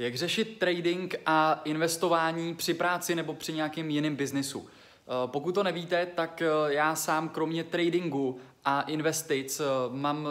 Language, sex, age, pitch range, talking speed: Czech, male, 20-39, 140-160 Hz, 135 wpm